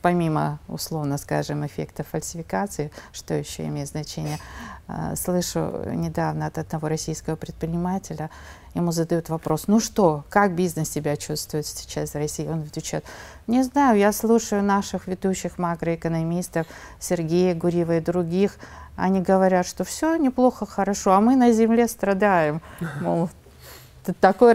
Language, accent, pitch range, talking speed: Russian, native, 155-185 Hz, 130 wpm